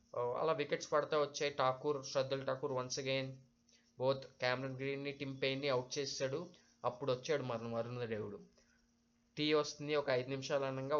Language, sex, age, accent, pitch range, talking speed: Telugu, male, 20-39, native, 130-145 Hz, 140 wpm